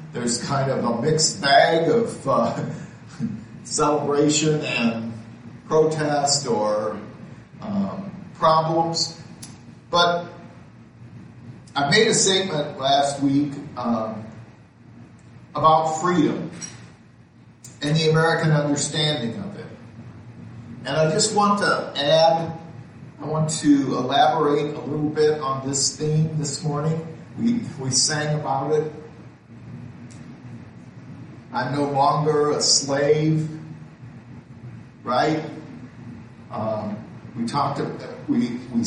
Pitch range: 120-155 Hz